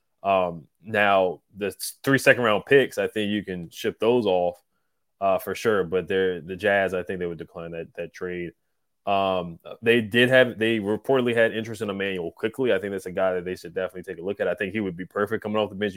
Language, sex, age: English, male, 20-39